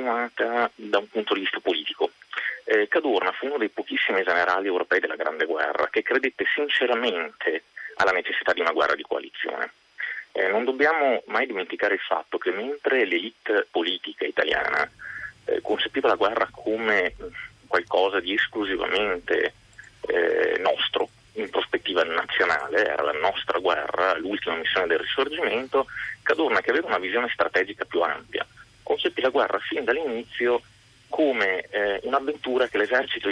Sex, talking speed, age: male, 140 wpm, 30-49